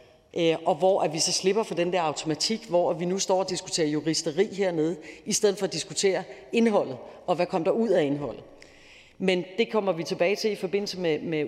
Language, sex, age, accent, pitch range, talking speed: Danish, female, 40-59, native, 160-190 Hz, 210 wpm